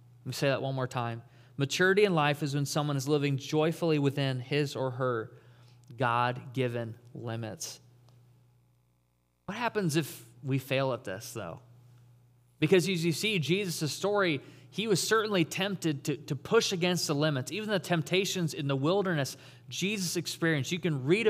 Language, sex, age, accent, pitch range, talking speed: English, male, 30-49, American, 125-165 Hz, 165 wpm